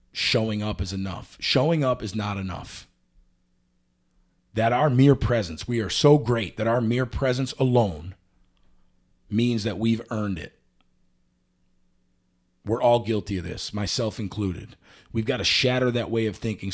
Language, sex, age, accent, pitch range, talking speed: English, male, 40-59, American, 95-120 Hz, 150 wpm